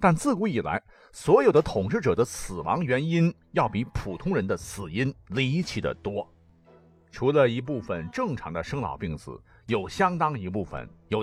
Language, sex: Chinese, male